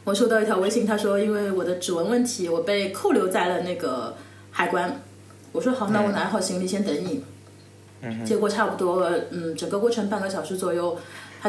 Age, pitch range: 20-39, 165-215 Hz